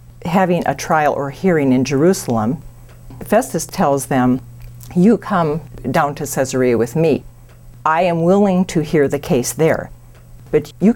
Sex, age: female, 50-69